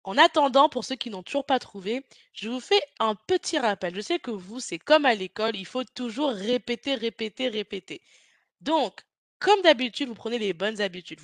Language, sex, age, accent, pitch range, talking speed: French, female, 20-39, French, 205-270 Hz, 200 wpm